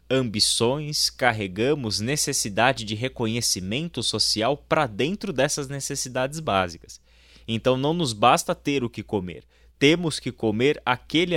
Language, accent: Portuguese, Brazilian